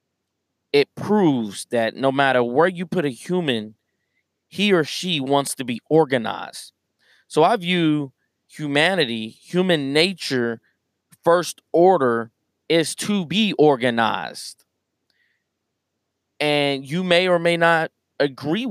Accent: American